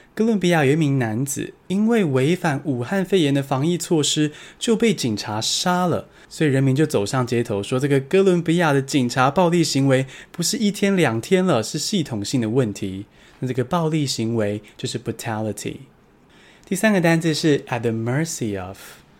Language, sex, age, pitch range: Chinese, male, 20-39, 115-170 Hz